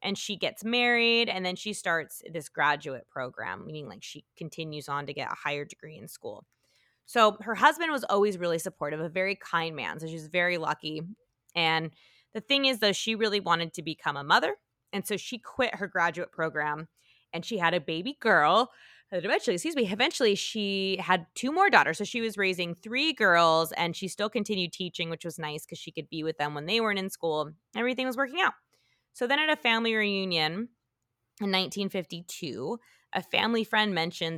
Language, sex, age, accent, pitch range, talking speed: English, female, 20-39, American, 165-220 Hz, 200 wpm